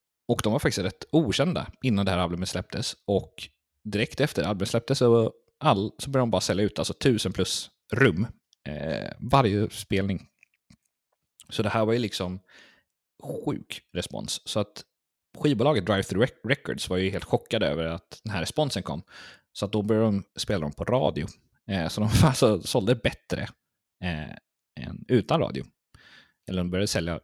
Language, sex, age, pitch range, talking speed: Swedish, male, 30-49, 85-110 Hz, 170 wpm